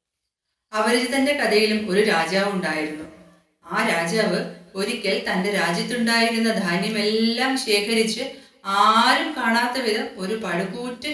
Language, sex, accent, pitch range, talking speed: Malayalam, female, native, 190-235 Hz, 95 wpm